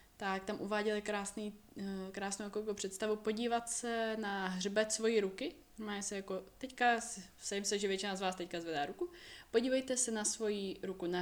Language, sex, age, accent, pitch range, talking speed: Czech, female, 20-39, native, 185-215 Hz, 175 wpm